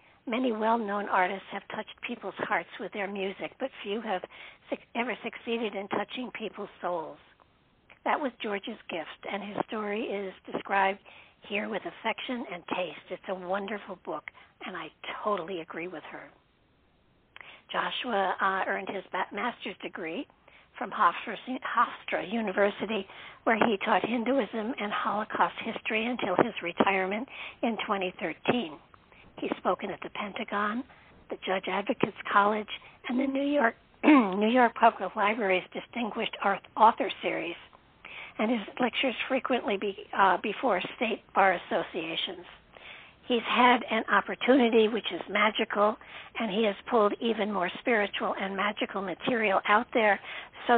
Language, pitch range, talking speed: English, 195-240 Hz, 135 wpm